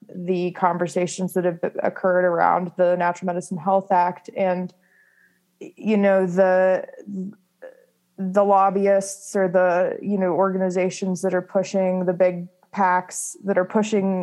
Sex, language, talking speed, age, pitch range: female, English, 130 wpm, 20-39, 180-195 Hz